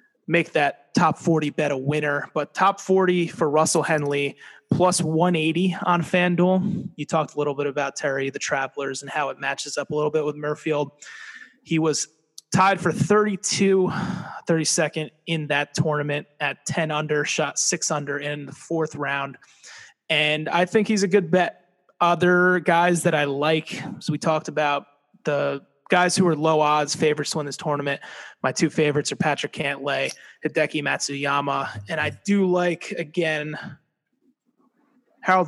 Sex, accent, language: male, American, English